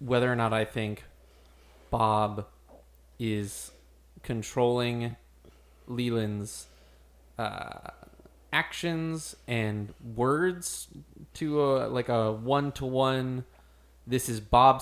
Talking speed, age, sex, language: 85 wpm, 20-39, male, English